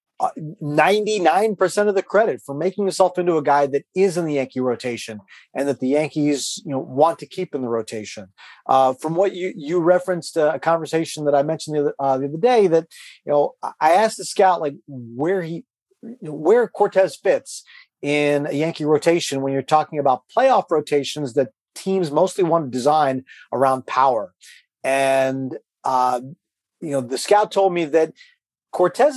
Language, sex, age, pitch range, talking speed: English, male, 40-59, 140-190 Hz, 175 wpm